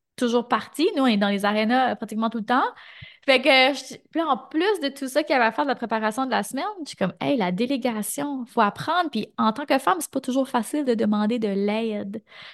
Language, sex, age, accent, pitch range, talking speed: French, female, 20-39, Canadian, 205-255 Hz, 255 wpm